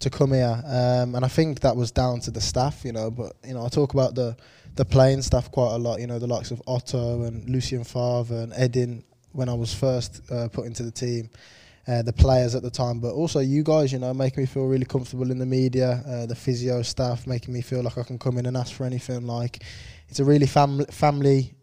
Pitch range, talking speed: 120-130 Hz, 250 wpm